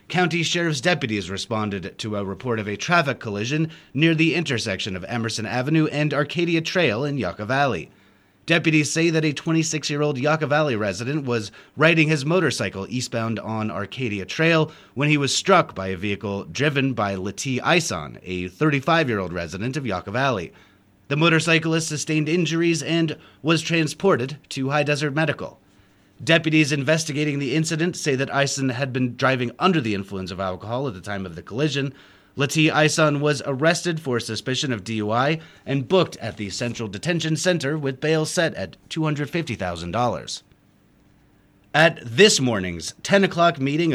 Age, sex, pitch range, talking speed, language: 30-49, male, 110-160 Hz, 155 wpm, English